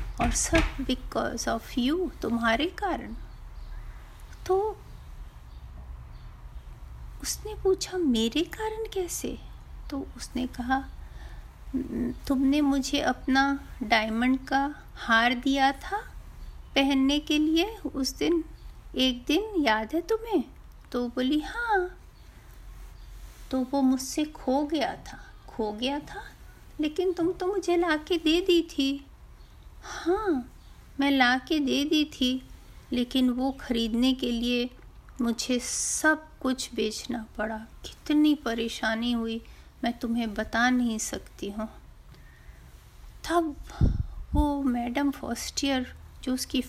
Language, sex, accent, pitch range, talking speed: Hindi, female, native, 250-340 Hz, 110 wpm